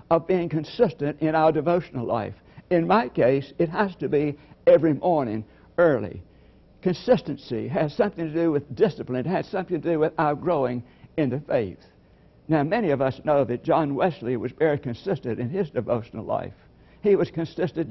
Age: 60-79